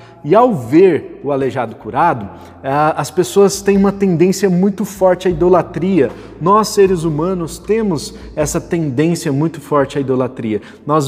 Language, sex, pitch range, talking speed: Portuguese, male, 155-210 Hz, 140 wpm